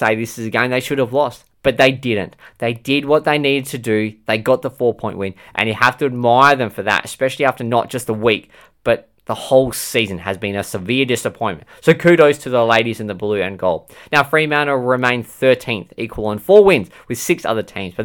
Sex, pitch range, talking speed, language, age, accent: male, 110-140 Hz, 230 wpm, English, 20-39, Australian